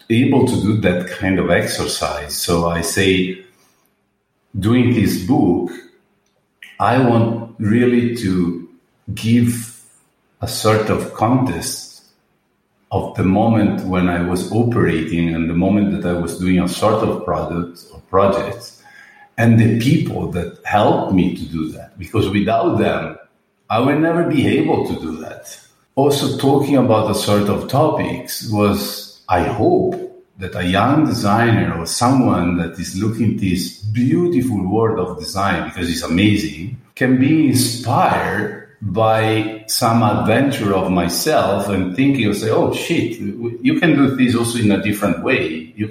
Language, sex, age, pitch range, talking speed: English, male, 50-69, 95-120 Hz, 150 wpm